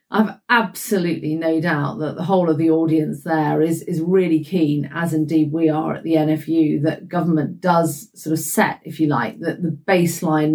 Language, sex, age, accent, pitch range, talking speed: English, female, 40-59, British, 155-175 Hz, 195 wpm